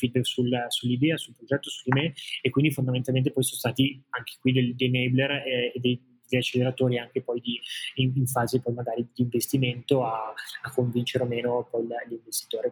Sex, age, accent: male, 20-39, native